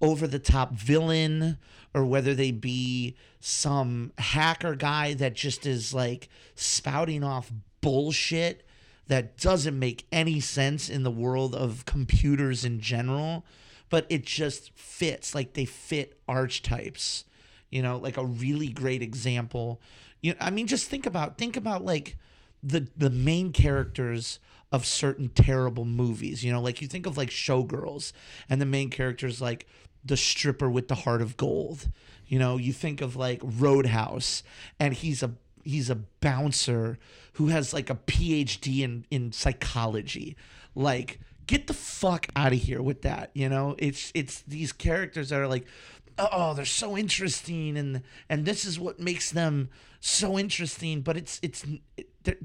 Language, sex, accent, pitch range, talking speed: English, male, American, 125-155 Hz, 160 wpm